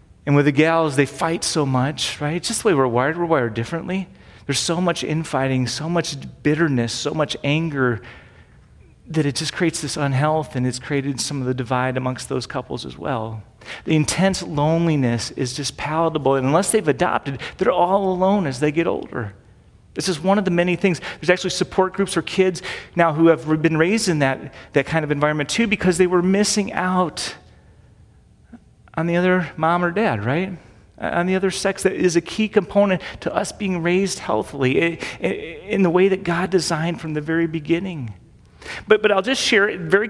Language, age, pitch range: English, 30-49, 140-190 Hz